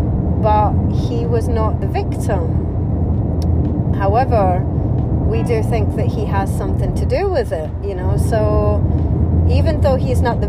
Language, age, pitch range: English, 30-49, 95-115 Hz